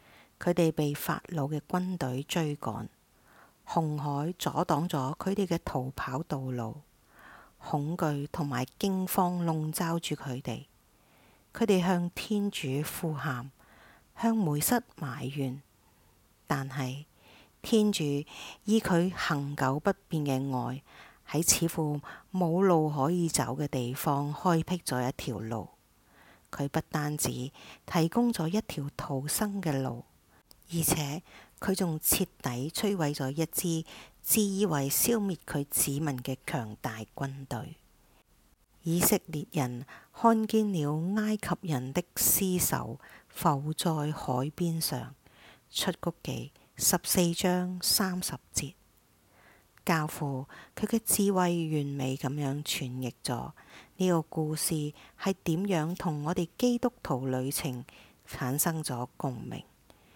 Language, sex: English, female